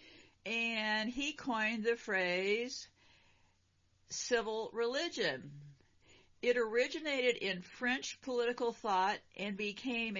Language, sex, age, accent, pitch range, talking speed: English, female, 50-69, American, 190-245 Hz, 90 wpm